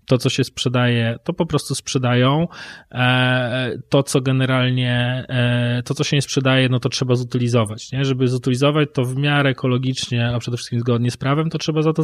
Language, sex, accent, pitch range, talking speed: Polish, male, native, 115-145 Hz, 185 wpm